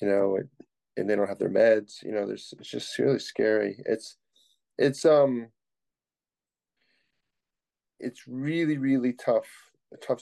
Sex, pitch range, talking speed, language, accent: male, 100-125 Hz, 140 wpm, English, American